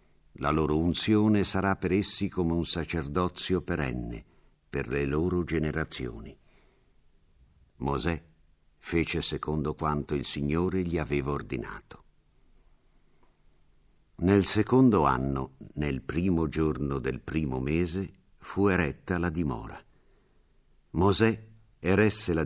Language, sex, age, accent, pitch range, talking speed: Italian, male, 50-69, native, 75-95 Hz, 105 wpm